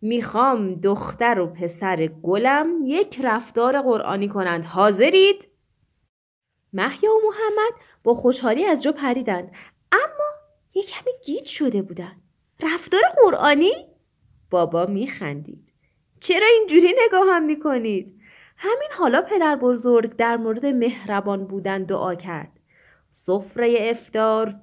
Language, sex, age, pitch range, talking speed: Persian, female, 20-39, 200-310 Hz, 105 wpm